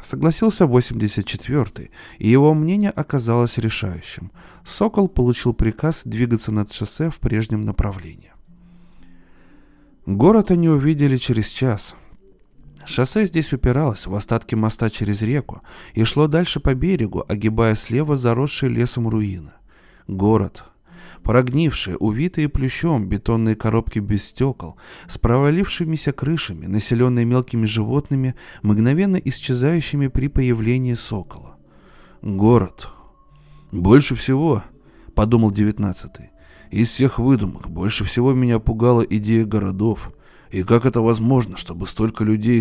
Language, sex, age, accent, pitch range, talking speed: Russian, male, 20-39, native, 105-140 Hz, 110 wpm